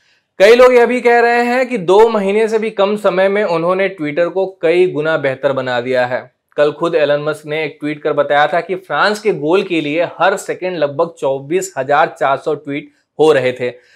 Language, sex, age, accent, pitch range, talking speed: Hindi, male, 20-39, native, 145-195 Hz, 205 wpm